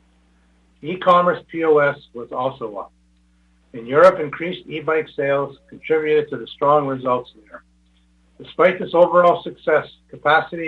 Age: 60-79